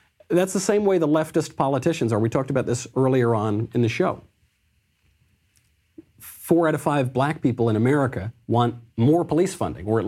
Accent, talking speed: American, 185 wpm